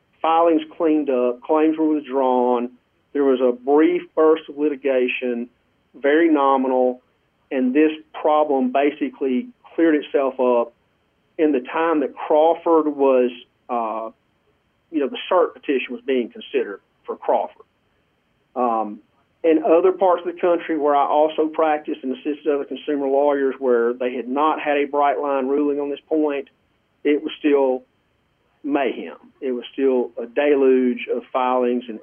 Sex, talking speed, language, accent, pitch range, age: male, 150 wpm, English, American, 125-150 Hz, 40-59